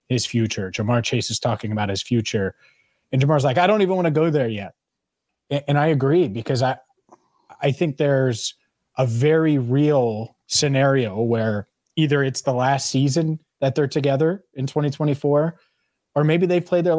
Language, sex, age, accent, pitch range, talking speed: English, male, 20-39, American, 120-150 Hz, 175 wpm